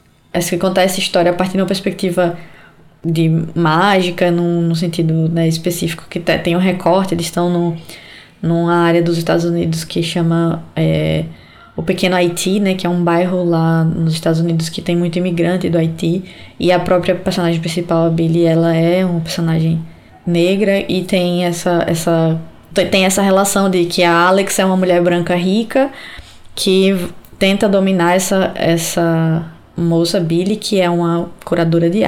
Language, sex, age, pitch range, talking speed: Portuguese, female, 10-29, 170-190 Hz, 160 wpm